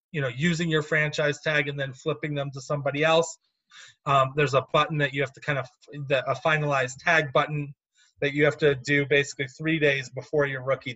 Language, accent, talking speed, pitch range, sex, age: English, American, 215 wpm, 130-160 Hz, male, 30-49